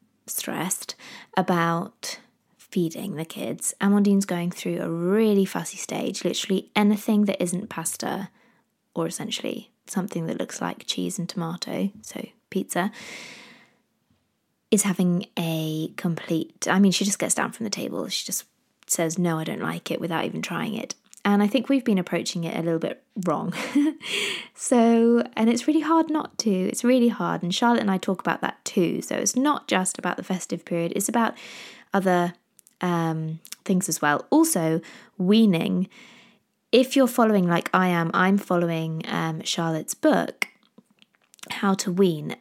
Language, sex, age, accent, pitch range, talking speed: English, female, 20-39, British, 175-230 Hz, 160 wpm